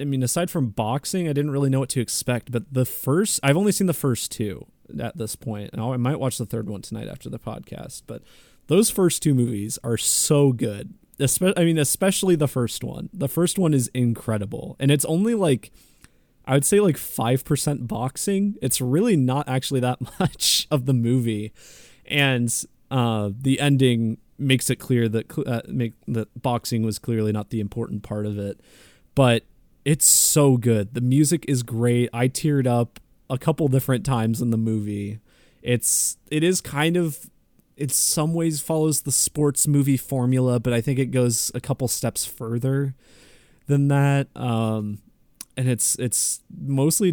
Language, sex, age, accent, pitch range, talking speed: English, male, 20-39, American, 115-145 Hz, 175 wpm